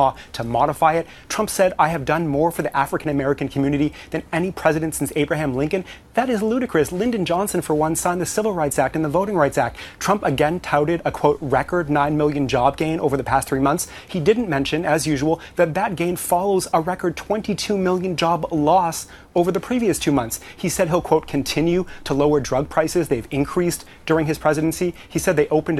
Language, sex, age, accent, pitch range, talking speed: English, male, 30-49, American, 145-180 Hz, 210 wpm